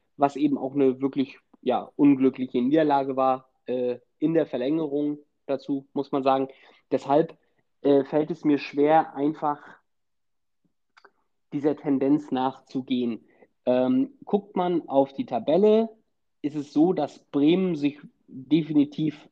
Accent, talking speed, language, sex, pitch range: German, 125 wpm, German, male, 130-165 Hz